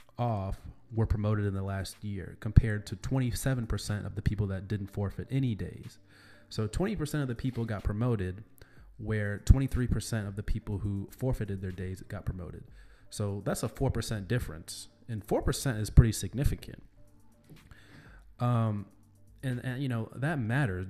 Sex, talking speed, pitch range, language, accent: male, 150 wpm, 100-120 Hz, English, American